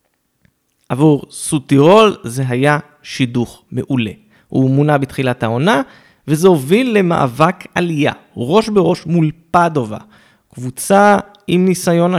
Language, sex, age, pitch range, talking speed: Hebrew, male, 20-39, 125-175 Hz, 105 wpm